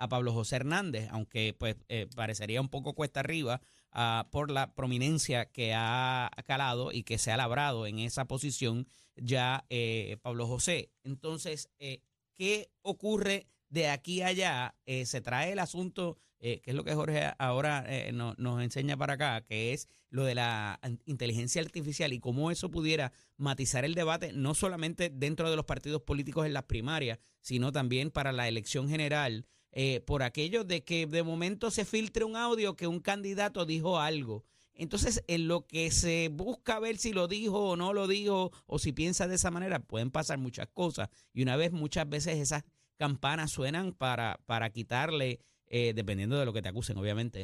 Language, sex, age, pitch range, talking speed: Spanish, male, 30-49, 120-165 Hz, 185 wpm